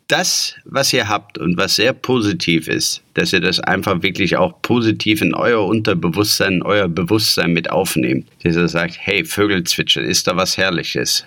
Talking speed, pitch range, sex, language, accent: 180 wpm, 95-120 Hz, male, German, German